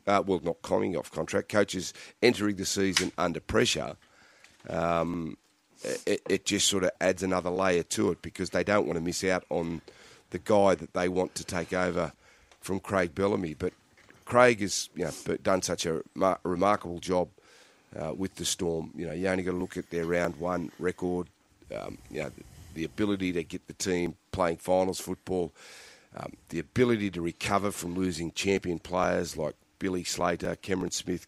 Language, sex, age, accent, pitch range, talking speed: English, male, 40-59, Australian, 85-95 Hz, 180 wpm